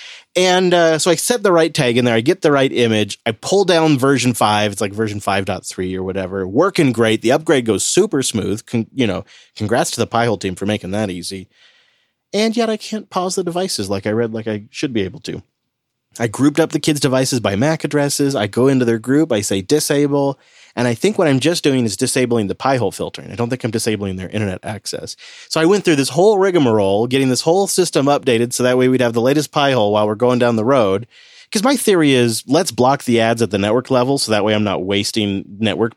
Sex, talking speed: male, 240 wpm